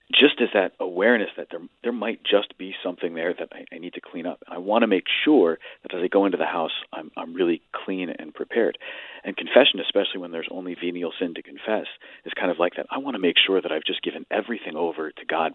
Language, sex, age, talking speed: English, male, 40-59, 255 wpm